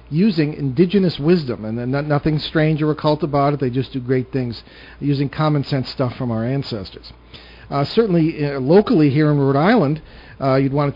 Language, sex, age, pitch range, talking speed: English, male, 50-69, 125-155 Hz, 190 wpm